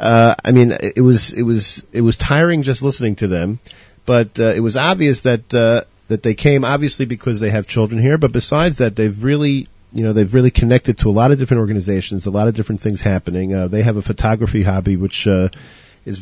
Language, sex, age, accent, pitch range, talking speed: English, male, 40-59, American, 100-125 Hz, 225 wpm